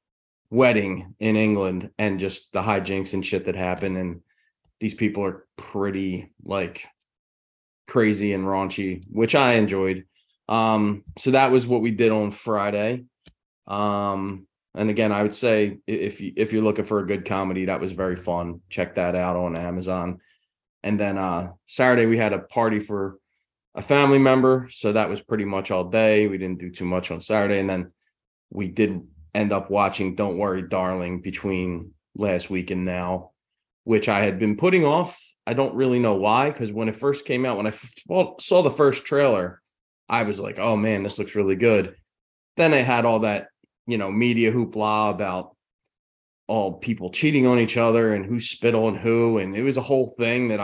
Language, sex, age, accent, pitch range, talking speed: English, male, 20-39, American, 95-115 Hz, 185 wpm